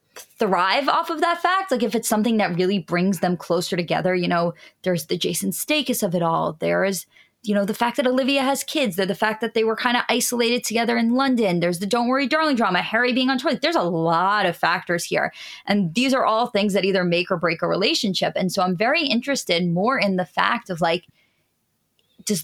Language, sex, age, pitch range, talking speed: English, female, 20-39, 180-245 Hz, 230 wpm